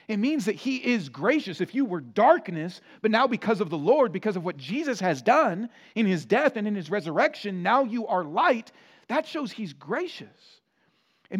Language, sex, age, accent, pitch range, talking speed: English, male, 40-59, American, 165-235 Hz, 200 wpm